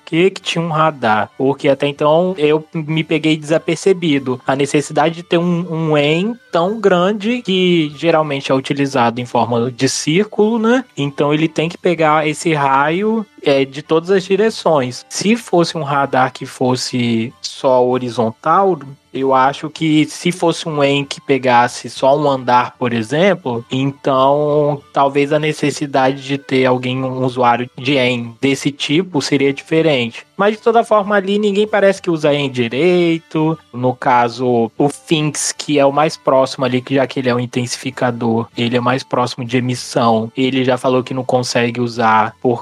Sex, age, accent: male, 20-39, Brazilian